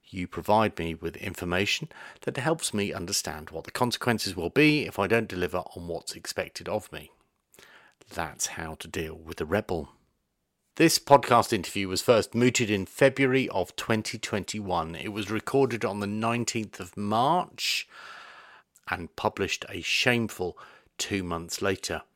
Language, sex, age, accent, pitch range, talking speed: English, male, 40-59, British, 95-120 Hz, 150 wpm